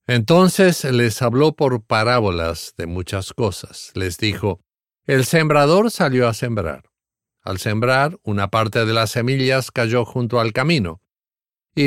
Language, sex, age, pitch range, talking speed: English, male, 50-69, 95-130 Hz, 135 wpm